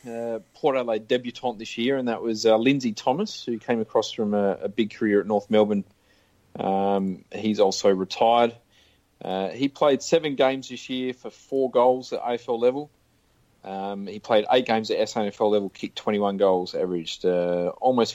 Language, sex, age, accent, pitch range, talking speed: English, male, 30-49, Australian, 105-130 Hz, 180 wpm